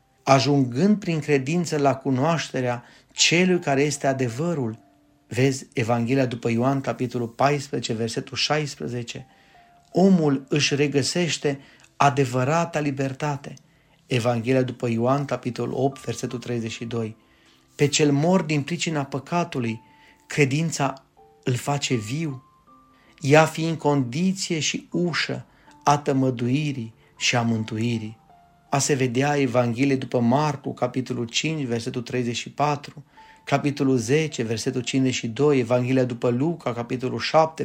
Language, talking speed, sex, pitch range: Romanian, 105 wpm, male, 120-150 Hz